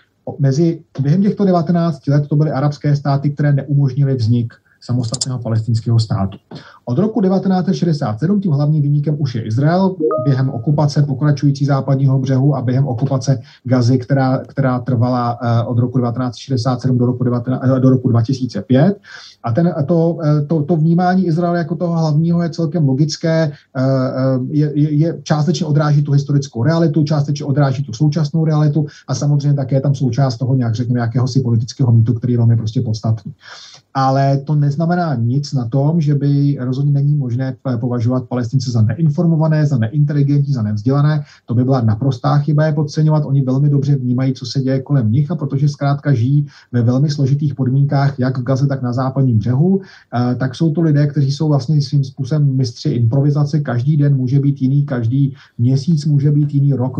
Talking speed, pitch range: 165 wpm, 130-150 Hz